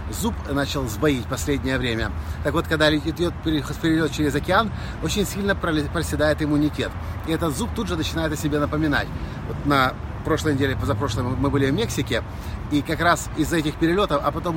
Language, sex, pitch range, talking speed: Russian, male, 130-185 Hz, 180 wpm